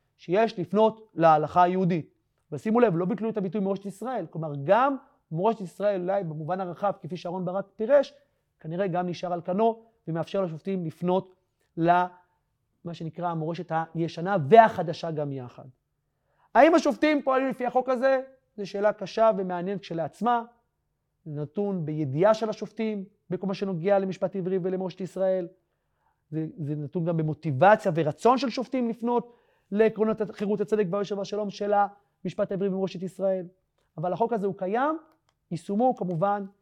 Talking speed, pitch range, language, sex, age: 145 wpm, 170-230 Hz, Hebrew, male, 30-49